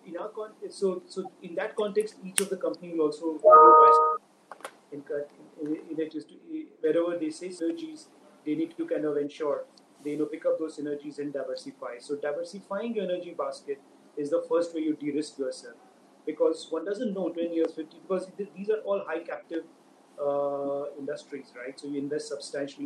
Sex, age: male, 30-49